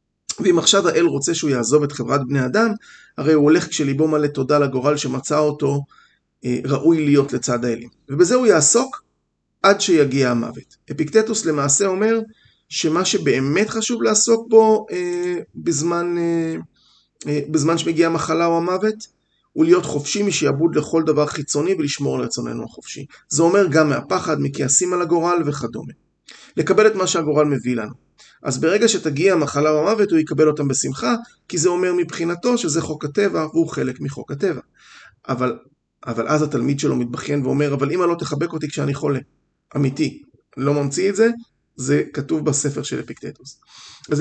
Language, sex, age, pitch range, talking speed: Hebrew, male, 30-49, 145-190 Hz, 155 wpm